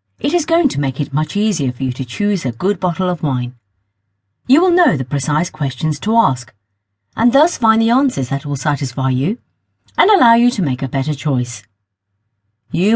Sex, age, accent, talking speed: female, 50-69, British, 200 wpm